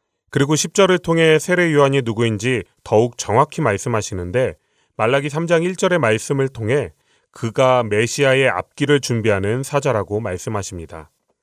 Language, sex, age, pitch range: Korean, male, 30-49, 105-145 Hz